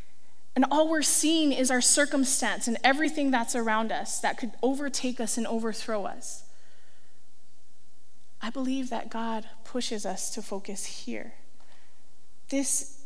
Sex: female